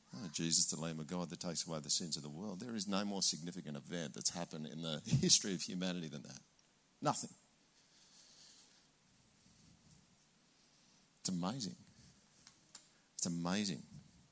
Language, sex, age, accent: English, male, 50-69, Australian